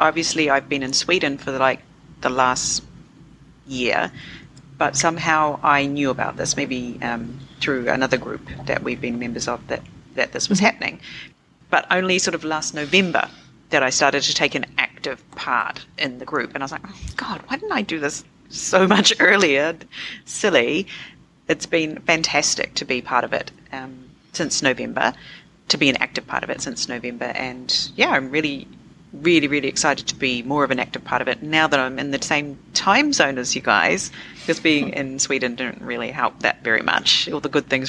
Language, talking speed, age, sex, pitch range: English, 195 wpm, 40-59, female, 130-160 Hz